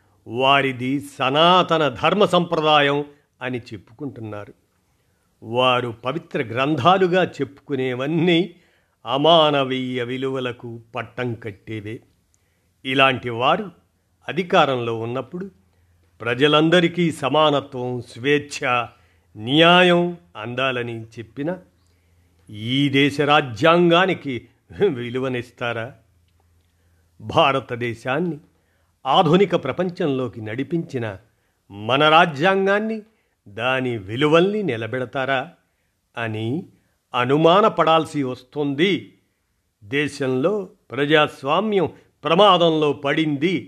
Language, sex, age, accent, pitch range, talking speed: Telugu, male, 50-69, native, 115-155 Hz, 60 wpm